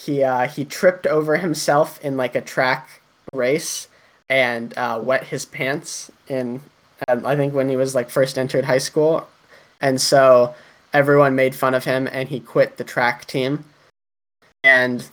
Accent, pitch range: American, 130-150 Hz